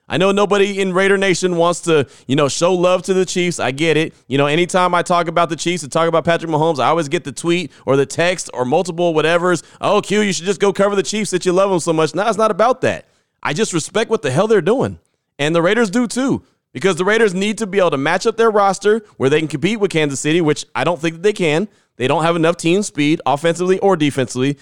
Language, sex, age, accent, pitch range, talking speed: English, male, 30-49, American, 150-195 Hz, 265 wpm